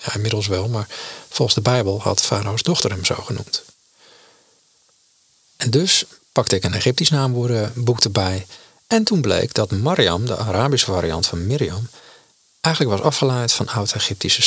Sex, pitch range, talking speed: male, 100-135 Hz, 155 wpm